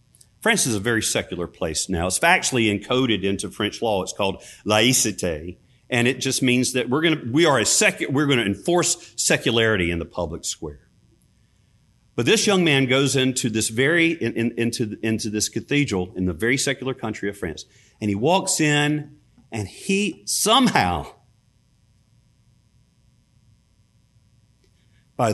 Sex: male